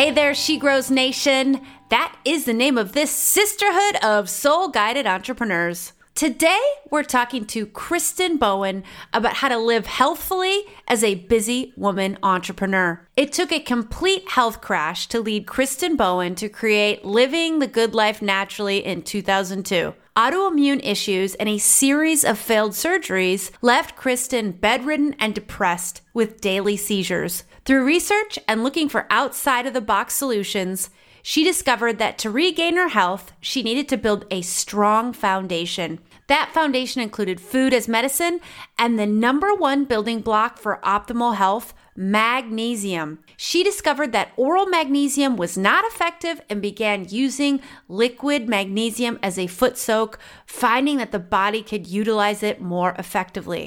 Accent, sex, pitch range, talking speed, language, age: American, female, 205-285 Hz, 150 wpm, English, 30-49